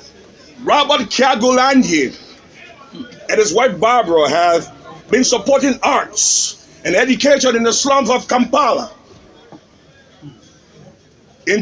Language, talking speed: English, 95 wpm